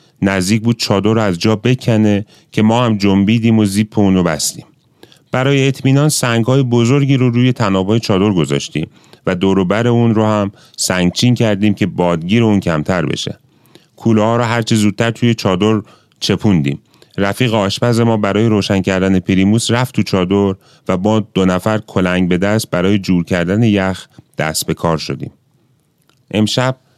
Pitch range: 95-115 Hz